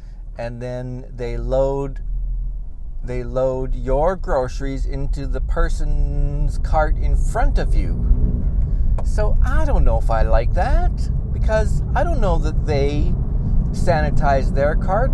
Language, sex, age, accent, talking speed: English, male, 50-69, American, 130 wpm